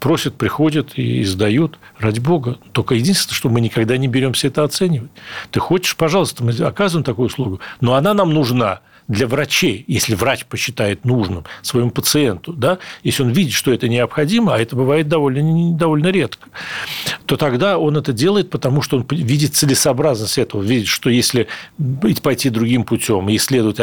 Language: Russian